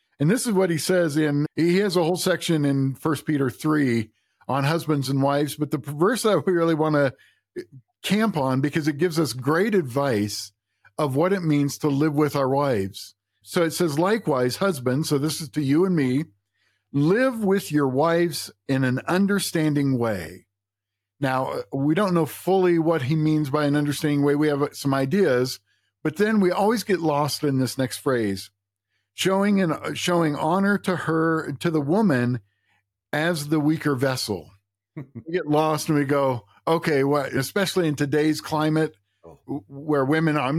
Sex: male